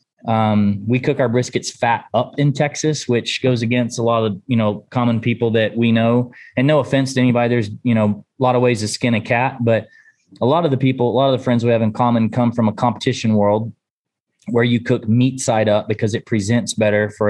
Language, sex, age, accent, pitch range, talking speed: English, male, 20-39, American, 110-125 Hz, 240 wpm